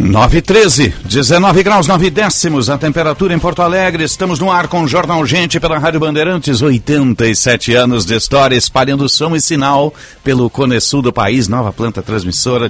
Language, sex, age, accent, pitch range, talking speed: Portuguese, male, 60-79, Brazilian, 125-160 Hz, 175 wpm